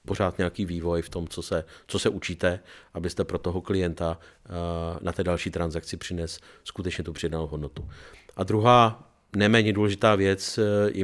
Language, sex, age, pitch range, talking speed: Slovak, male, 40-59, 95-110 Hz, 160 wpm